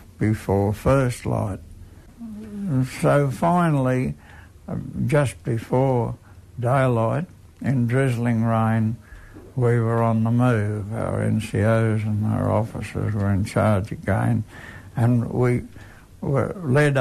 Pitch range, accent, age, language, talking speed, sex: 105-125 Hz, American, 60-79, English, 100 wpm, male